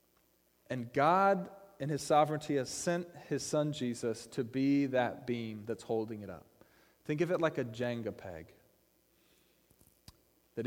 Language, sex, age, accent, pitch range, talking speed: English, male, 30-49, American, 120-165 Hz, 145 wpm